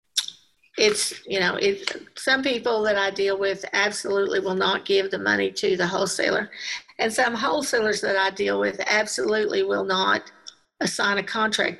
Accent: American